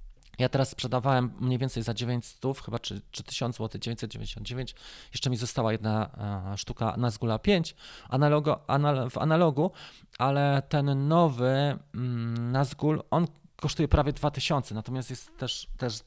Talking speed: 140 wpm